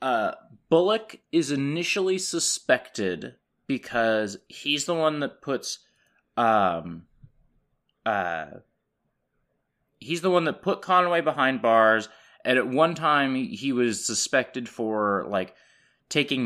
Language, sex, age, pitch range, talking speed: English, male, 20-39, 105-165 Hz, 115 wpm